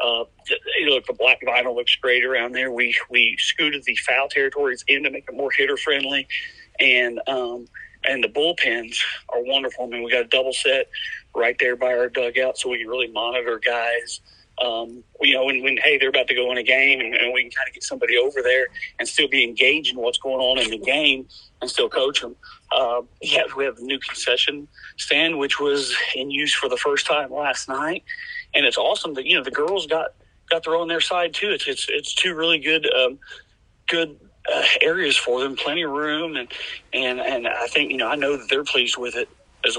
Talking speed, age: 225 wpm, 40-59